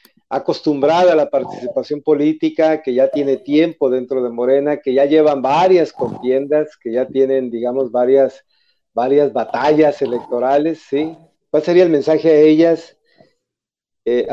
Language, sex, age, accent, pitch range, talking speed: Spanish, male, 50-69, Mexican, 130-165 Hz, 140 wpm